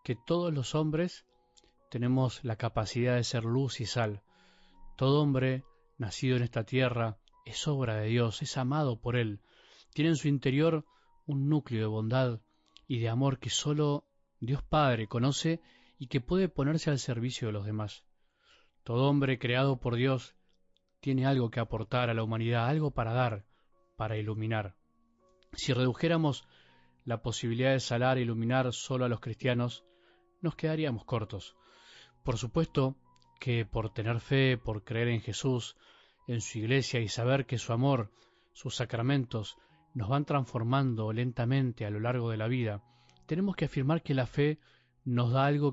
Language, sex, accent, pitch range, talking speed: Spanish, male, Argentinian, 115-140 Hz, 160 wpm